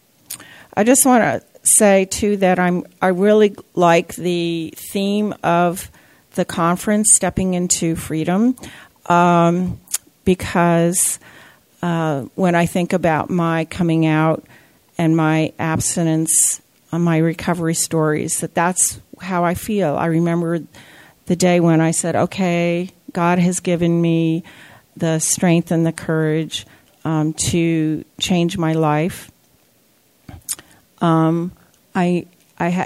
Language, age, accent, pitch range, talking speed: English, 50-69, American, 165-185 Hz, 120 wpm